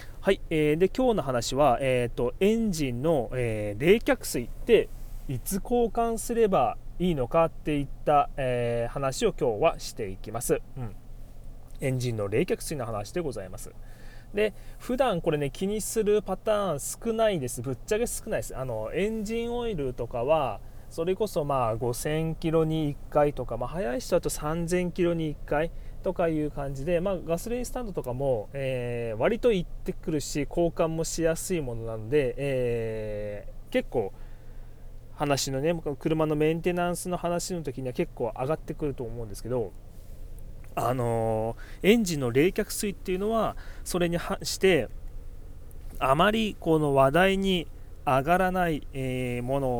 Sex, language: male, Japanese